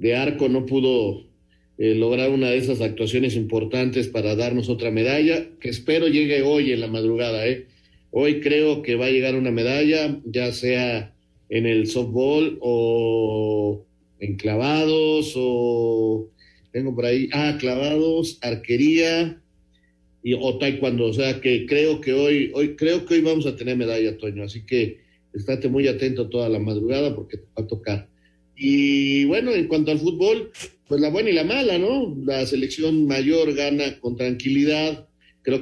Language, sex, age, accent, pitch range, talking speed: Spanish, male, 50-69, Mexican, 115-145 Hz, 165 wpm